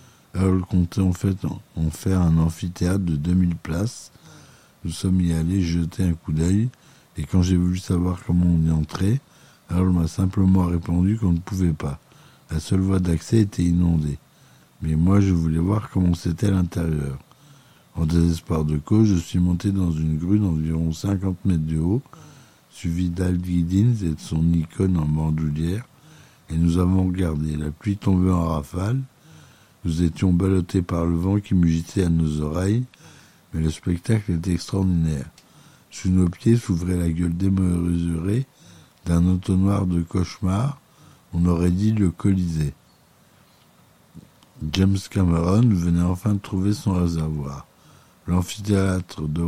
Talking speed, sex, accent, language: 150 wpm, male, French, French